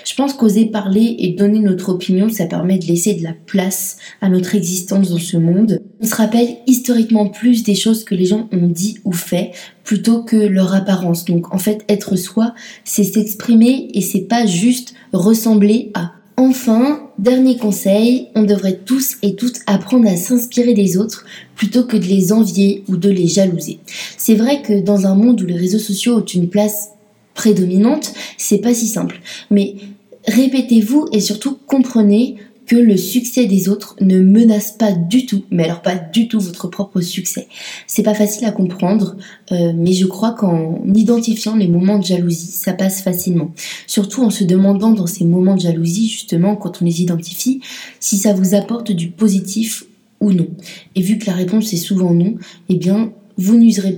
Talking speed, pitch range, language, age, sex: 185 wpm, 185-225 Hz, French, 20-39, female